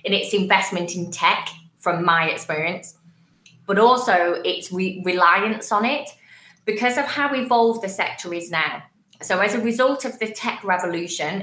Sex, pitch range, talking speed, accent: female, 170-215 Hz, 160 wpm, British